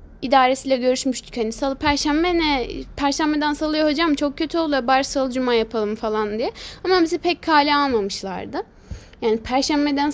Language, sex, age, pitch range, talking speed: Turkish, female, 10-29, 235-330 Hz, 150 wpm